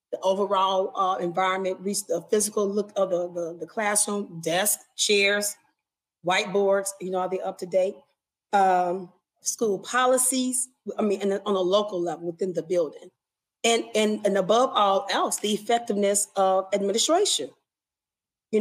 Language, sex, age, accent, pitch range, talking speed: English, female, 30-49, American, 185-220 Hz, 140 wpm